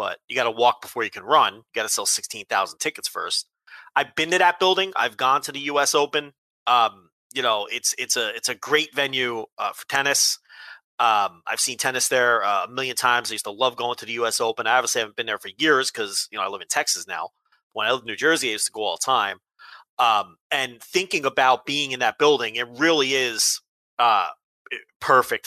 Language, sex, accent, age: English, male, American, 30-49